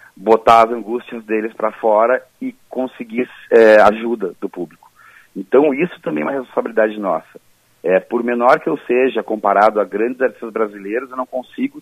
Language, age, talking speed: Portuguese, 40-59, 170 wpm